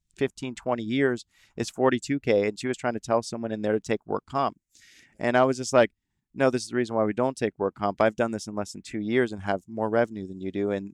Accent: American